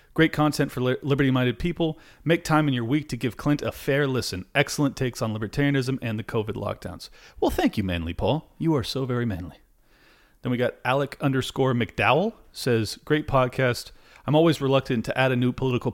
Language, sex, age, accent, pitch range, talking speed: English, male, 40-59, American, 110-135 Hz, 190 wpm